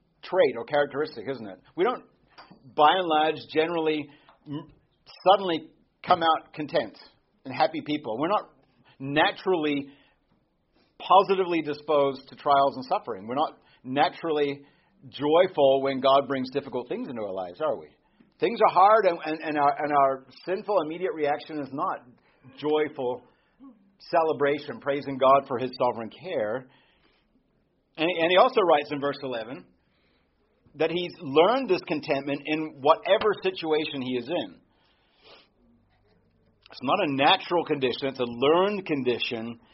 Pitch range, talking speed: 135-175 Hz, 135 wpm